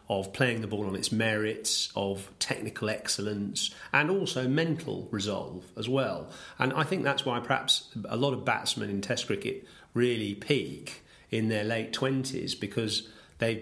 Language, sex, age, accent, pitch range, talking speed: English, male, 40-59, British, 105-120 Hz, 165 wpm